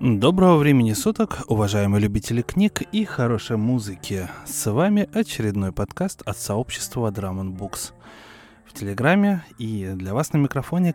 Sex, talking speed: male, 125 wpm